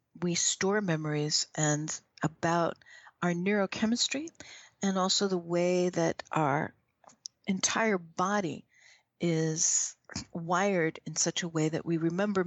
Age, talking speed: 60-79, 115 wpm